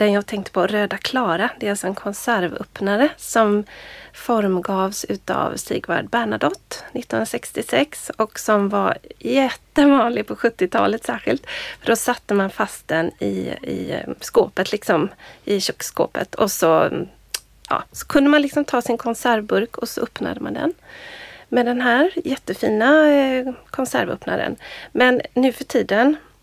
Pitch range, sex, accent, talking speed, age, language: 205-265 Hz, female, native, 135 wpm, 30-49, Swedish